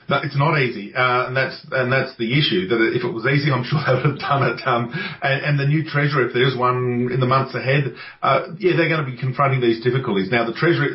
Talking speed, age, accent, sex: 270 wpm, 40-59, Australian, male